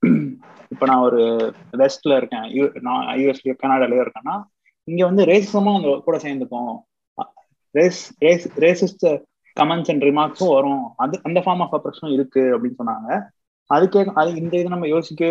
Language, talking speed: Tamil, 135 wpm